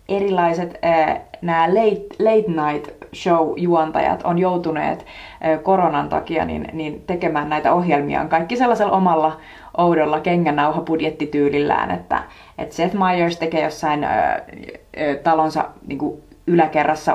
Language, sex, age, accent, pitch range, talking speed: Finnish, female, 30-49, native, 155-190 Hz, 120 wpm